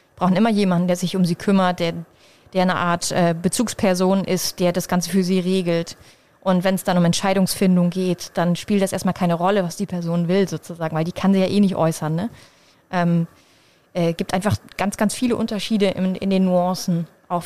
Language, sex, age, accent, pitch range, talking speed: German, female, 30-49, German, 180-210 Hz, 215 wpm